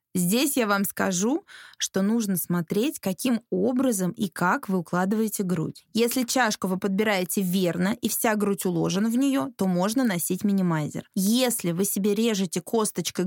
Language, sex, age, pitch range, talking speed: Russian, female, 20-39, 185-230 Hz, 155 wpm